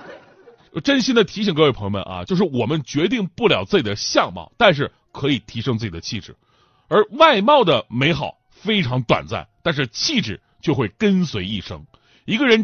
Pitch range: 115-195 Hz